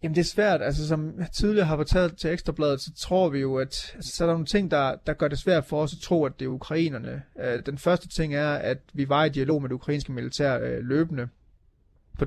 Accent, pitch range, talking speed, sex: native, 125-150 Hz, 240 wpm, male